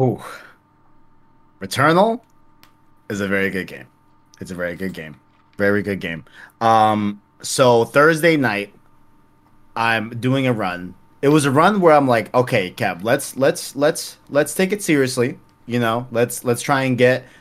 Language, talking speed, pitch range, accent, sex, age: English, 155 wpm, 110-140 Hz, American, male, 20-39